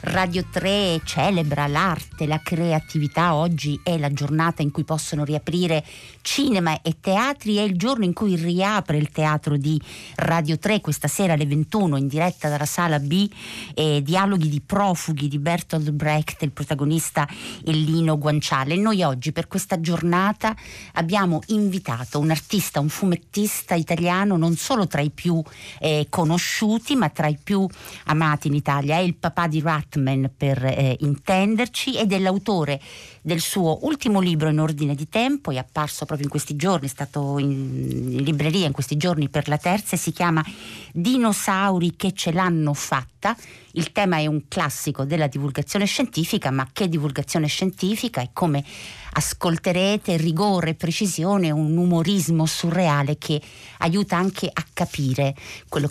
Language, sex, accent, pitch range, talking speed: Italian, female, native, 150-185 Hz, 155 wpm